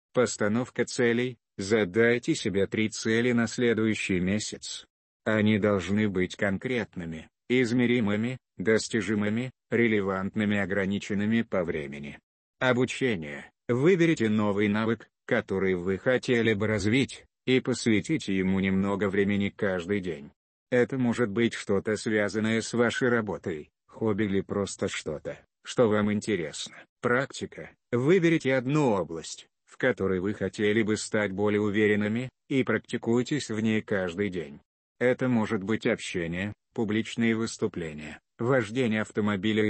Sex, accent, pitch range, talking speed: male, native, 100-120 Hz, 115 wpm